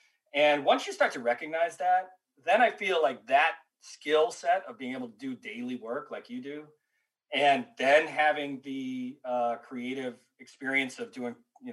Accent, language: American, English